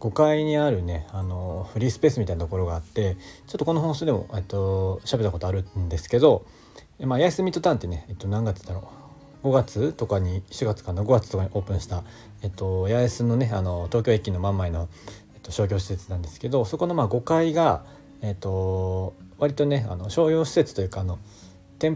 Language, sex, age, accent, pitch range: Japanese, male, 40-59, native, 95-120 Hz